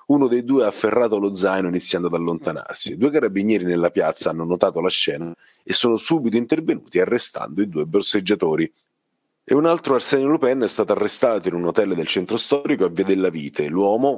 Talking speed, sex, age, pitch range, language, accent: 190 wpm, male, 30-49, 90-120 Hz, Italian, native